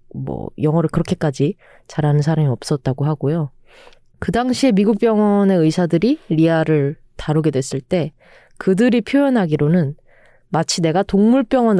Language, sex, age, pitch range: Korean, female, 20-39, 150-195 Hz